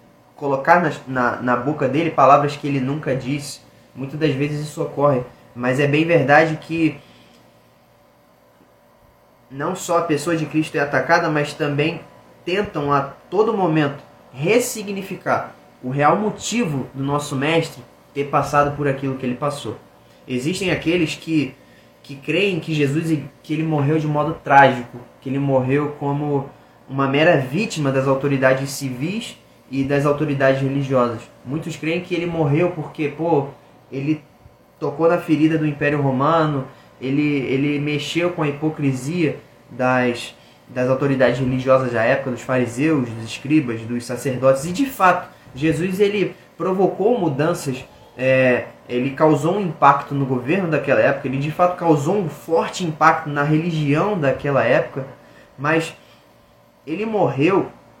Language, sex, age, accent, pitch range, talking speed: Portuguese, male, 20-39, Brazilian, 135-160 Hz, 135 wpm